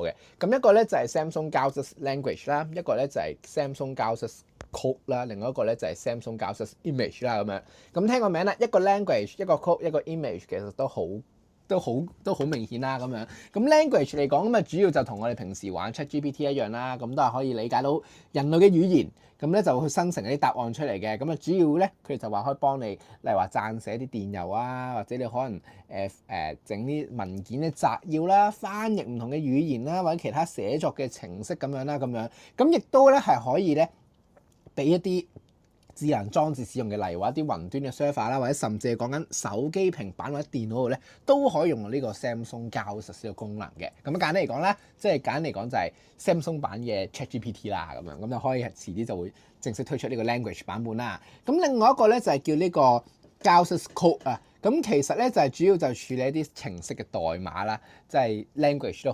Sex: male